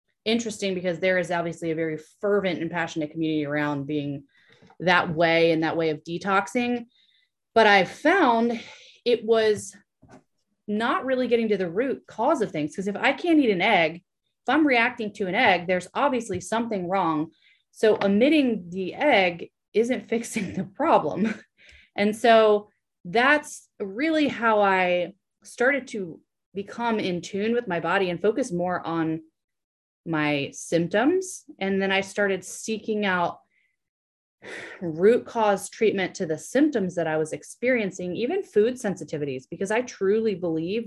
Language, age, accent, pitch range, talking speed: English, 30-49, American, 165-225 Hz, 150 wpm